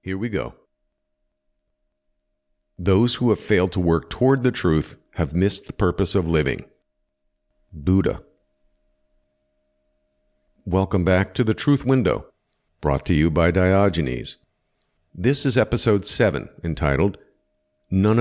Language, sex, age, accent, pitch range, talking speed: English, male, 50-69, American, 70-105 Hz, 120 wpm